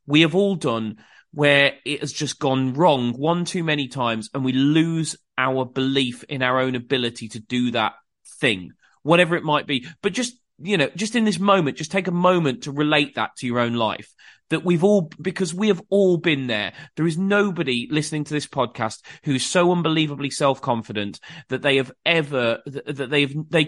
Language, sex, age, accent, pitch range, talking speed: English, male, 30-49, British, 130-160 Hz, 200 wpm